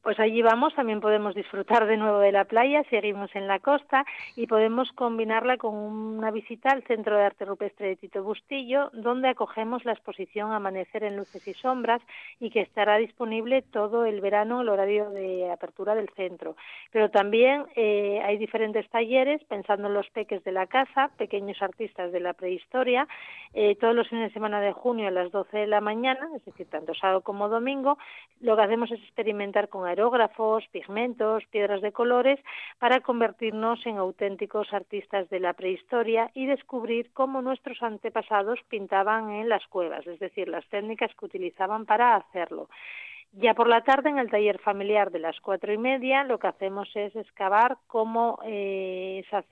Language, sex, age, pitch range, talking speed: Spanish, female, 40-59, 200-235 Hz, 175 wpm